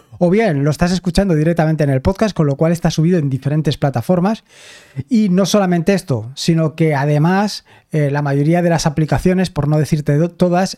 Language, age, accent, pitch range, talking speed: Spanish, 20-39, Spanish, 155-190 Hz, 195 wpm